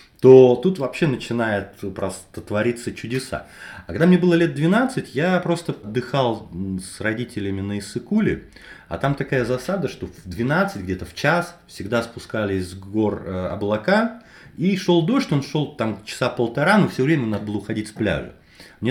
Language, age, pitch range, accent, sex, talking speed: Russian, 30-49, 105-165 Hz, native, male, 165 wpm